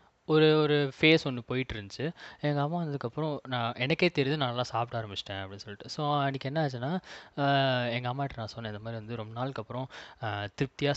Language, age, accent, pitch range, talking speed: Tamil, 20-39, native, 110-145 Hz, 175 wpm